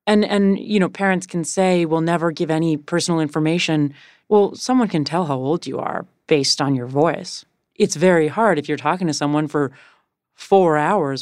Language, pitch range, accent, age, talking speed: English, 145-170 Hz, American, 30-49, 195 wpm